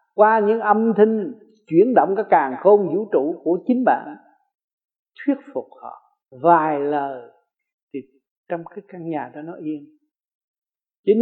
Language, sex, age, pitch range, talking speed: Vietnamese, male, 60-79, 155-255 Hz, 150 wpm